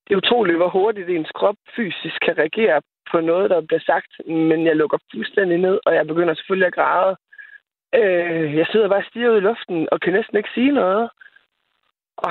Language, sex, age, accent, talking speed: Danish, male, 20-39, native, 195 wpm